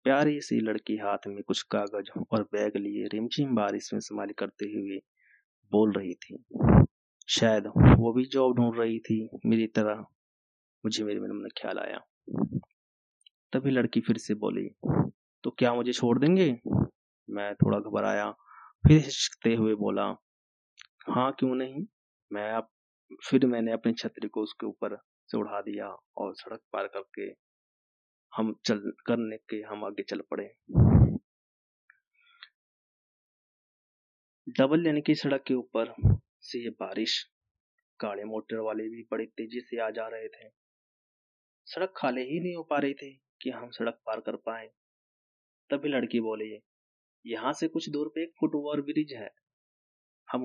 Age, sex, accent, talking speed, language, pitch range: 30-49, male, native, 150 wpm, Hindi, 105-145 Hz